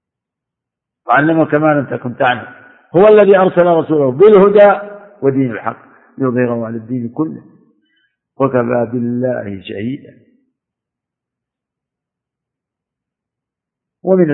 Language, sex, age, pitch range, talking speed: Arabic, male, 50-69, 115-145 Hz, 85 wpm